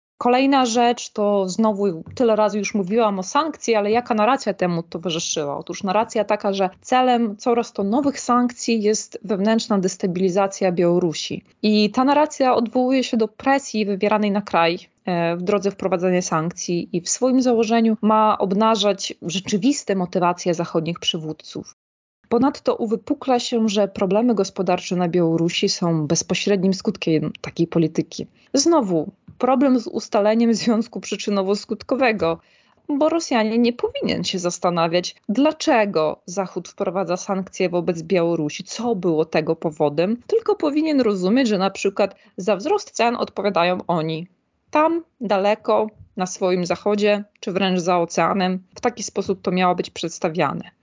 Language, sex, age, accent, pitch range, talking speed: Polish, female, 20-39, native, 180-235 Hz, 135 wpm